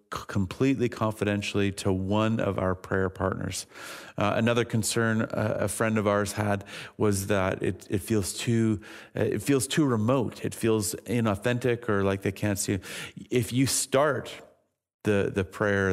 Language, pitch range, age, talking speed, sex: English, 95-110 Hz, 40-59, 155 wpm, male